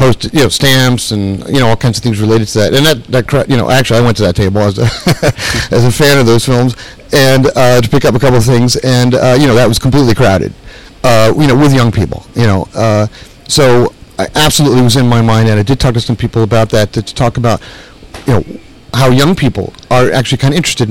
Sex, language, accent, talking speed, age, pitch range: male, English, American, 250 wpm, 40-59, 115-135 Hz